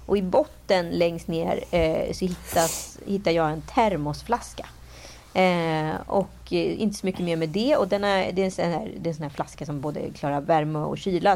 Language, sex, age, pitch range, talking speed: Swedish, female, 30-49, 155-205 Hz, 210 wpm